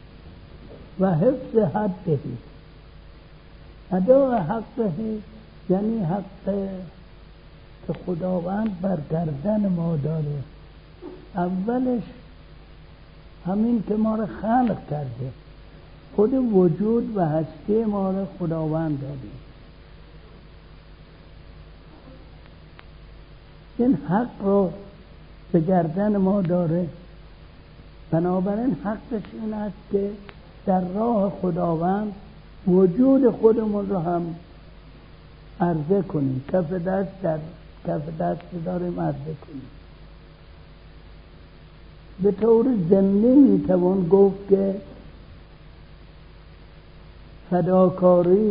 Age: 60-79